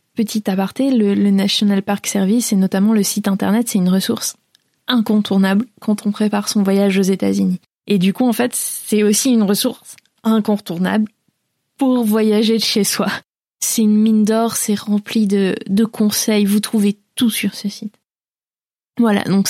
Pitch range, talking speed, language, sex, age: 195-225 Hz, 170 wpm, French, female, 20-39